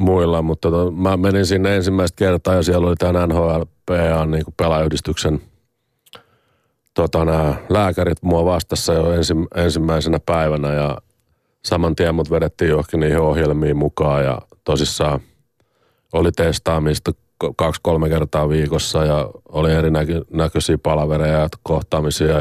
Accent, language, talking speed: native, Finnish, 125 wpm